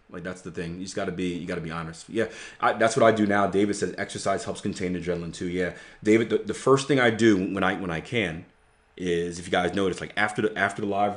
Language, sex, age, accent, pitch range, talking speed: English, male, 30-49, American, 90-110 Hz, 285 wpm